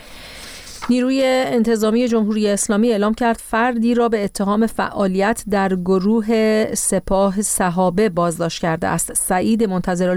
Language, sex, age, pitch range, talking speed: Persian, female, 40-59, 180-220 Hz, 120 wpm